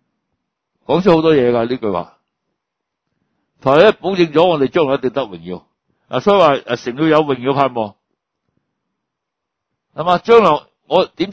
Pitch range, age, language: 125-170 Hz, 60-79, Chinese